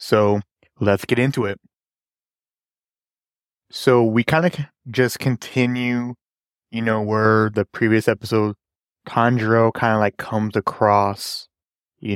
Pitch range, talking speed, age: 100-115 Hz, 120 wpm, 20-39